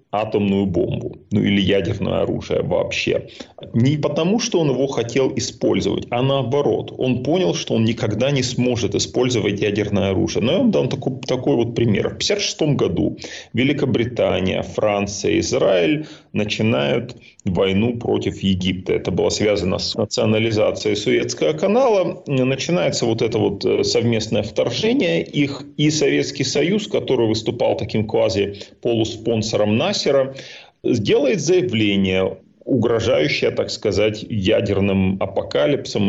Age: 30-49